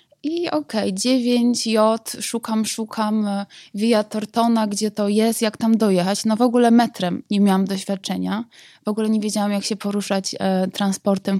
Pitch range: 195-230 Hz